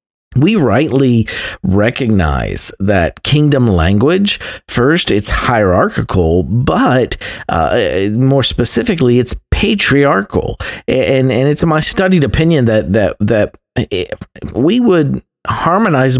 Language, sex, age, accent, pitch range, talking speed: English, male, 50-69, American, 95-125 Hz, 105 wpm